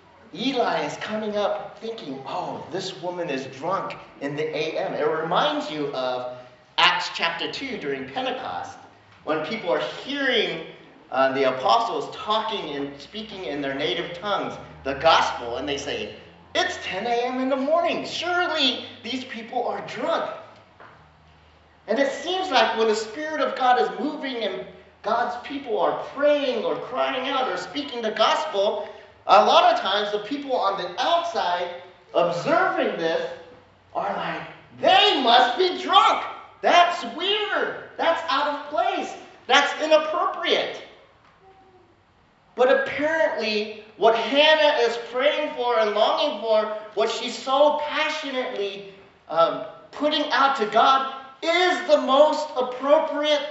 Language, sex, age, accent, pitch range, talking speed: English, male, 40-59, American, 210-310 Hz, 140 wpm